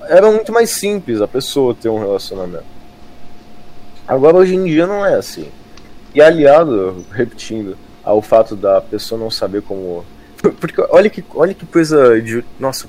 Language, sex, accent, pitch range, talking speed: Portuguese, male, Brazilian, 110-160 Hz, 160 wpm